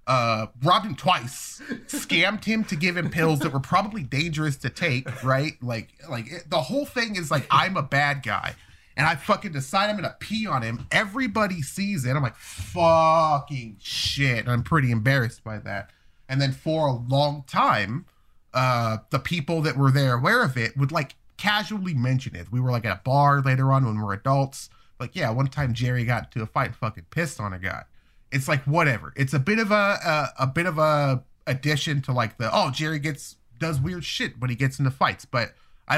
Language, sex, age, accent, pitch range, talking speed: English, male, 20-39, American, 120-155 Hz, 210 wpm